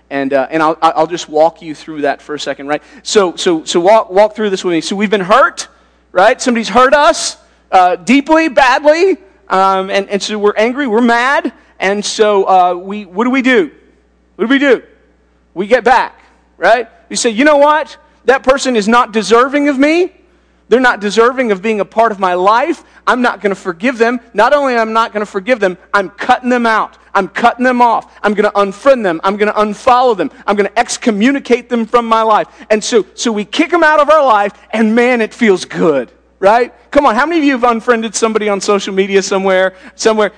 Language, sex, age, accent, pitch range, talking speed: English, male, 40-59, American, 210-300 Hz, 225 wpm